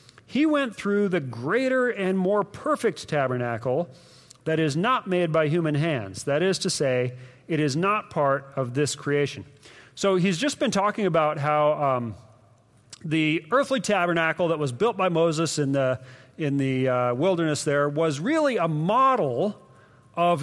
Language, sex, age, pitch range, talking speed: English, male, 40-59, 130-190 Hz, 160 wpm